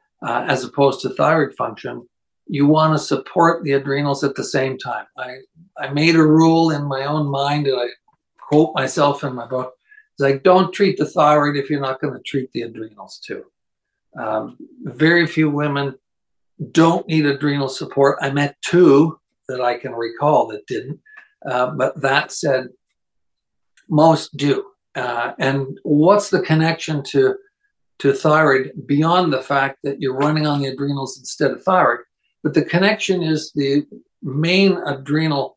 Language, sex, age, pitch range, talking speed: English, male, 60-79, 135-165 Hz, 165 wpm